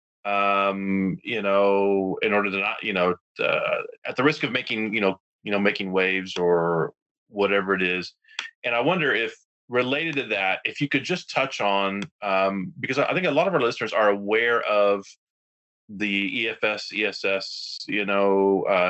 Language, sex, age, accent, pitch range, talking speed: English, male, 30-49, American, 95-120 Hz, 180 wpm